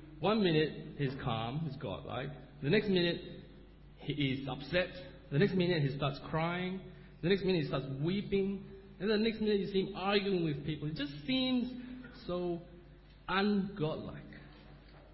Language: English